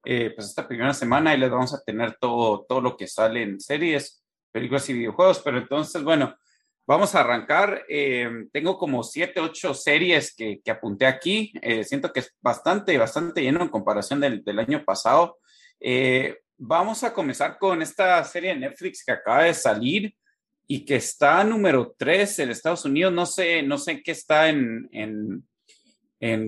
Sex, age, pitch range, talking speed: male, 30-49, 125-190 Hz, 180 wpm